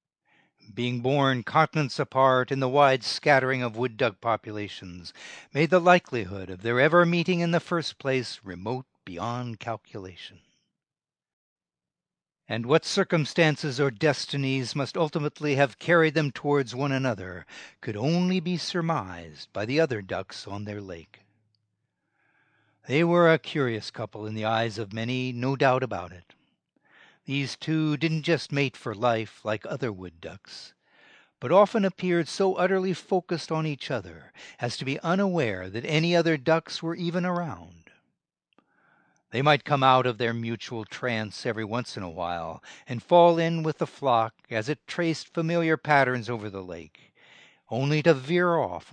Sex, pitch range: male, 110-160 Hz